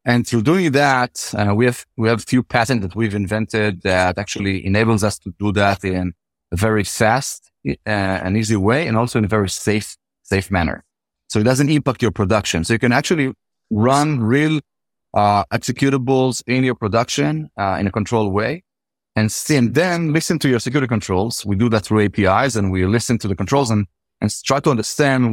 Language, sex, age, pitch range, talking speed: English, male, 30-49, 100-125 Hz, 200 wpm